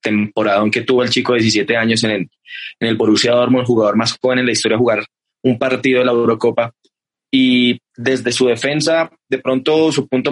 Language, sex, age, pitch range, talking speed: Spanish, male, 20-39, 110-130 Hz, 210 wpm